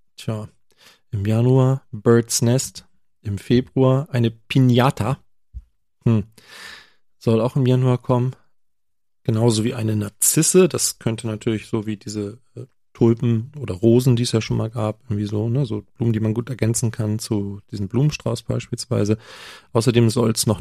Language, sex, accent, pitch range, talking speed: German, male, German, 105-120 Hz, 155 wpm